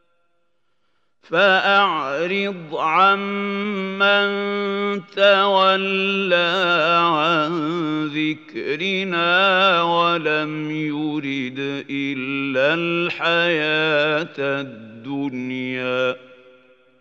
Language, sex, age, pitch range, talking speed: Arabic, male, 50-69, 150-190 Hz, 35 wpm